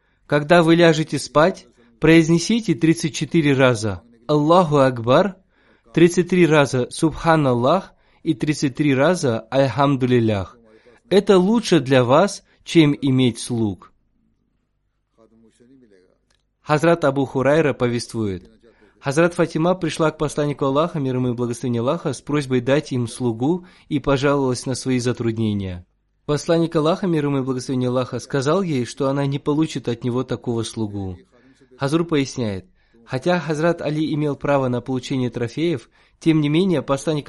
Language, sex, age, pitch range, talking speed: Russian, male, 20-39, 125-160 Hz, 125 wpm